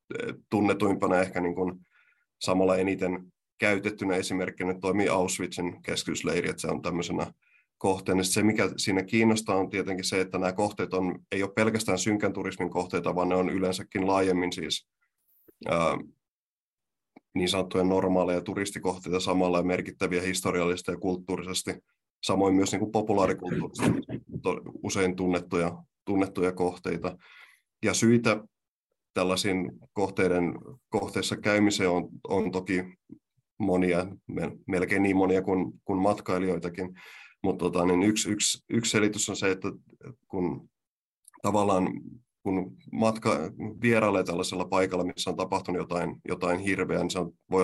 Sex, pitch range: male, 90-100 Hz